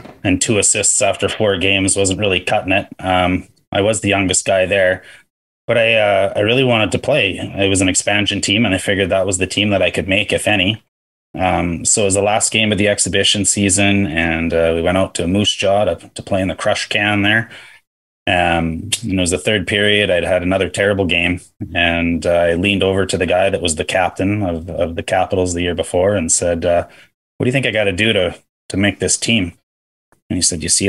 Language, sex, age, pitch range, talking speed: English, male, 20-39, 90-100 Hz, 235 wpm